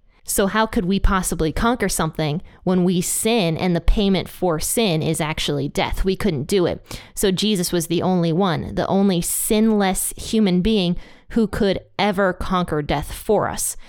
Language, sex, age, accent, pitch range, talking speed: English, female, 20-39, American, 170-210 Hz, 175 wpm